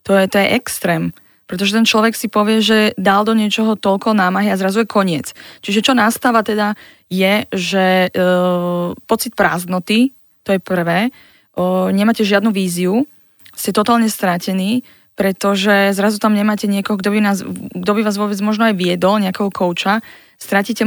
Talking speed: 160 wpm